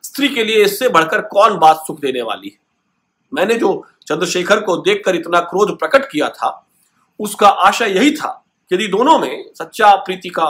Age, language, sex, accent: 50-69, Hindi, male, native